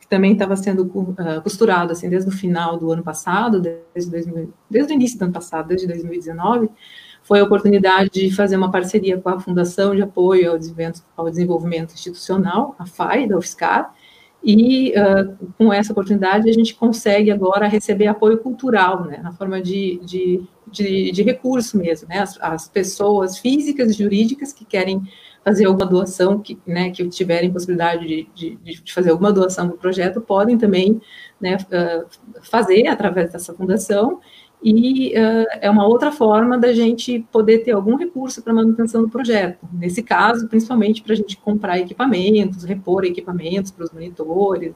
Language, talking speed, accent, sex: Portuguese, 160 wpm, Brazilian, female